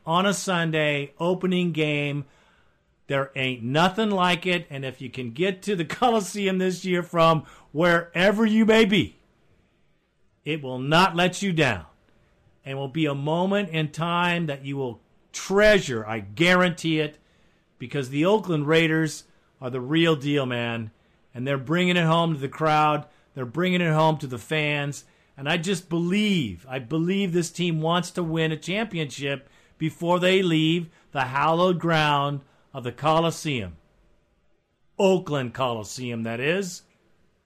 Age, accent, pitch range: 50-69, American, 140-180 Hz